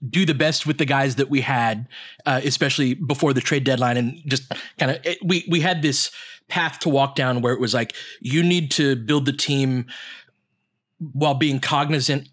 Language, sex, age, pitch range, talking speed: English, male, 30-49, 125-160 Hz, 195 wpm